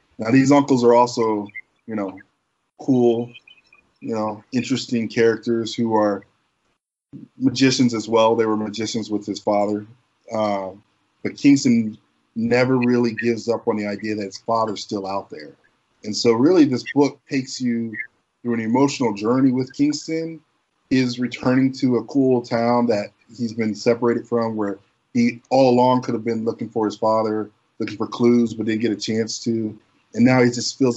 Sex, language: male, English